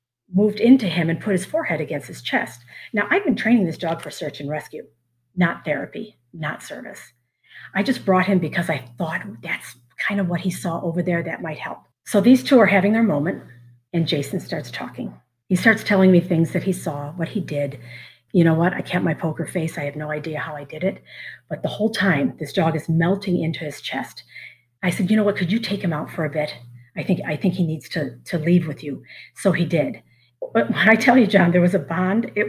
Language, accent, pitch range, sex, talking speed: English, American, 150-200 Hz, female, 235 wpm